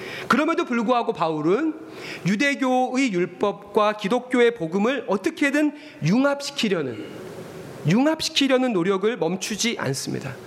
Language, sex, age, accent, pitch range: Korean, male, 40-59, native, 155-245 Hz